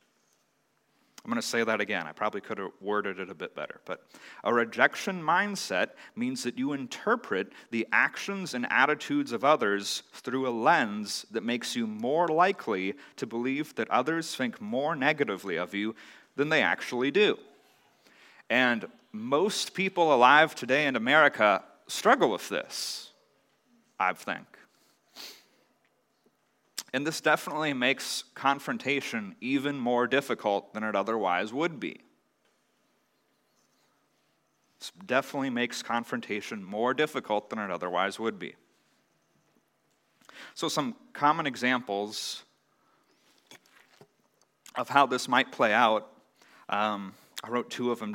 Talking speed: 125 wpm